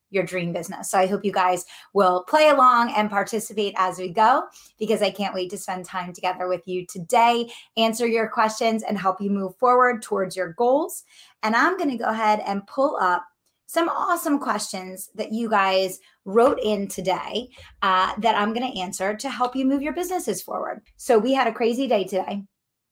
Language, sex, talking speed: English, female, 195 wpm